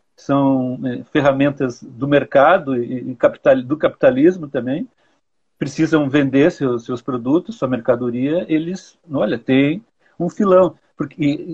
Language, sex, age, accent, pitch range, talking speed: Portuguese, male, 50-69, Brazilian, 130-180 Hz, 125 wpm